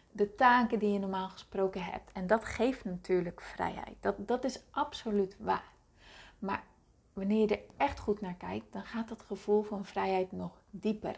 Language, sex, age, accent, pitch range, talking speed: Dutch, female, 30-49, Dutch, 190-220 Hz, 175 wpm